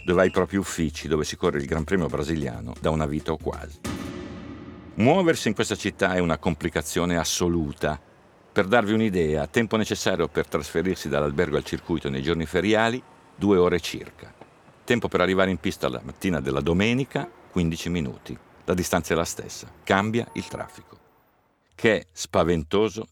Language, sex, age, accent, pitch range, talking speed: Italian, male, 50-69, native, 80-105 Hz, 165 wpm